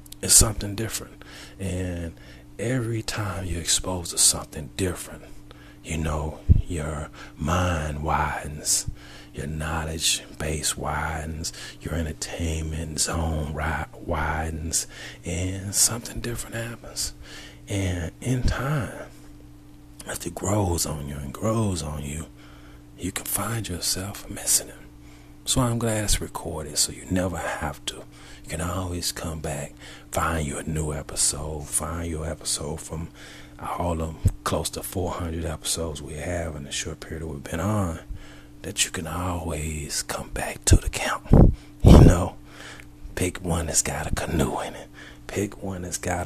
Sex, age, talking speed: male, 40-59, 140 wpm